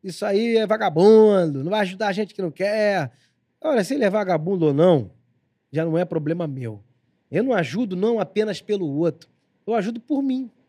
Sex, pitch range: male, 155-215 Hz